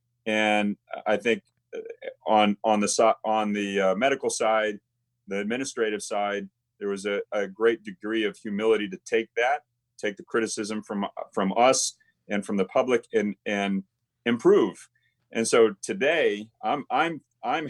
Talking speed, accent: 145 wpm, American